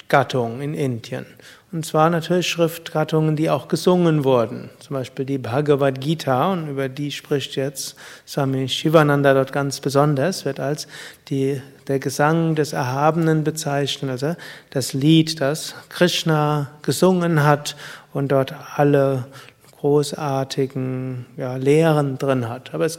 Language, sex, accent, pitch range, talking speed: German, male, German, 135-160 Hz, 130 wpm